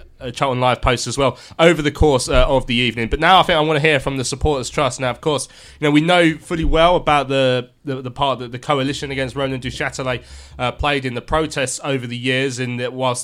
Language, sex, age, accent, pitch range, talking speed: English, male, 20-39, British, 120-140 Hz, 250 wpm